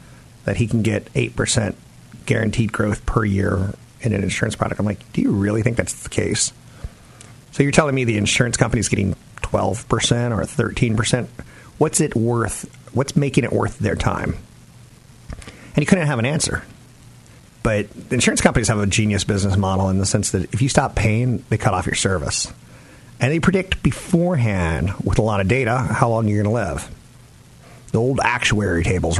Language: English